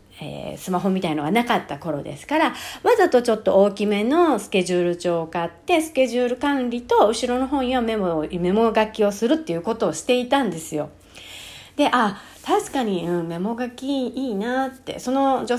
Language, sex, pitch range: Japanese, female, 185-290 Hz